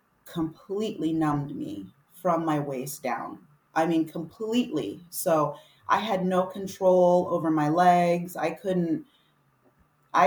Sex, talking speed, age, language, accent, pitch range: female, 115 wpm, 30-49, English, American, 150-185 Hz